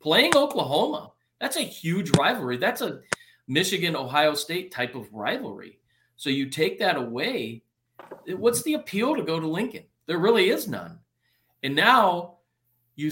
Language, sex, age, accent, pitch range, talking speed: English, male, 40-59, American, 130-195 Hz, 145 wpm